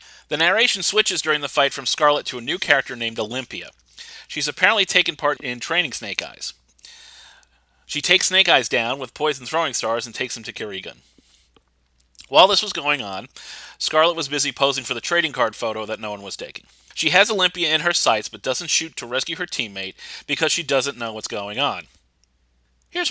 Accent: American